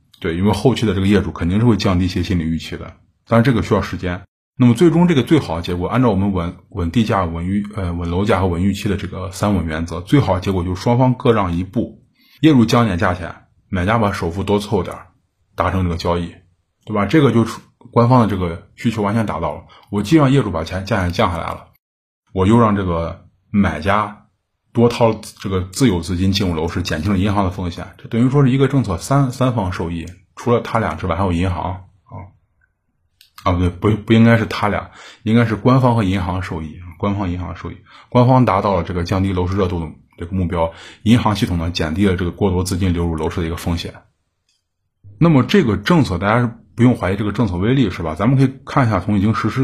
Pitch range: 90-115 Hz